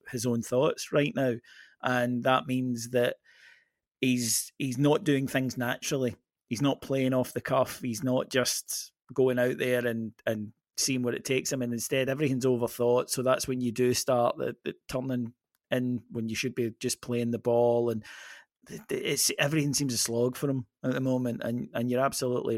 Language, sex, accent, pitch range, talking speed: English, male, British, 120-140 Hz, 190 wpm